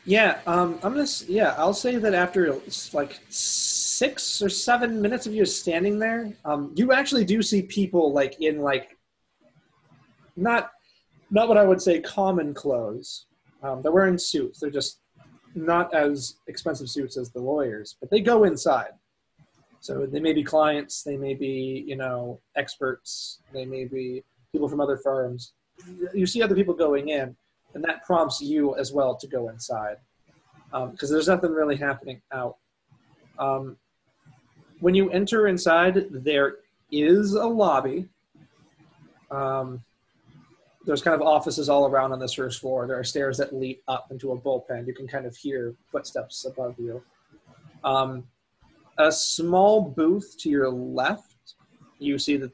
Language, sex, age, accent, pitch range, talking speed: English, male, 30-49, American, 130-185 Hz, 160 wpm